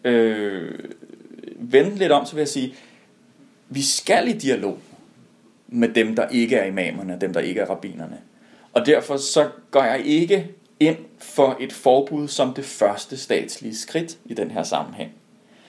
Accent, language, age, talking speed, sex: native, Danish, 30-49, 160 wpm, male